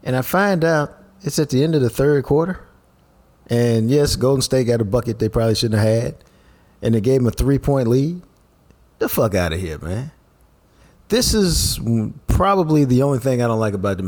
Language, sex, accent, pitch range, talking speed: English, male, American, 100-140 Hz, 210 wpm